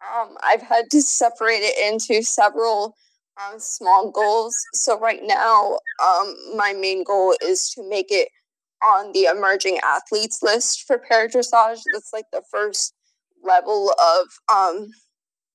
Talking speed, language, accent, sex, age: 145 wpm, English, American, female, 20-39